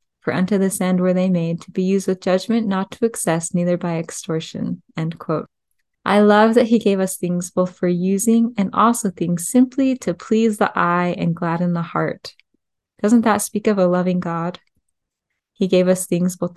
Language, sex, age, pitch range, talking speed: English, female, 20-39, 180-210 Hz, 190 wpm